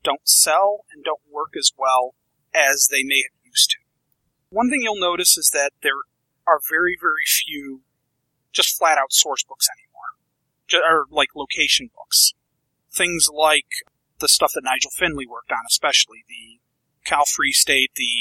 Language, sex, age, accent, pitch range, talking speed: English, male, 40-59, American, 135-205 Hz, 160 wpm